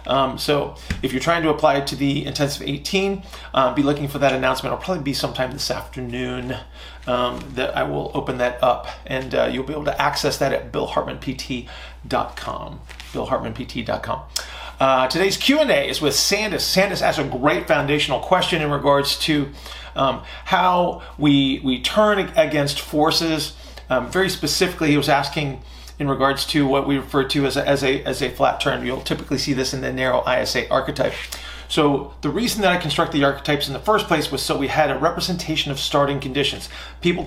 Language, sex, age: English, male, 30-49